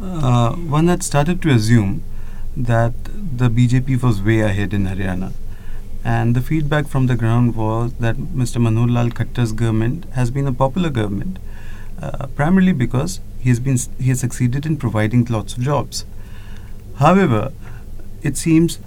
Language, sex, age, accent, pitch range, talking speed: English, male, 30-49, Indian, 105-135 Hz, 155 wpm